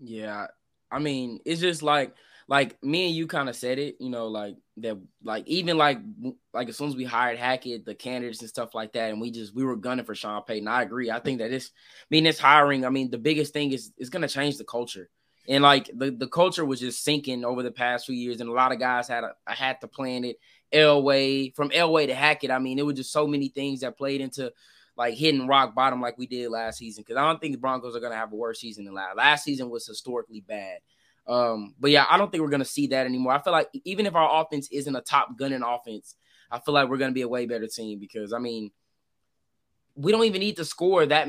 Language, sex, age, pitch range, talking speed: English, male, 20-39, 120-150 Hz, 255 wpm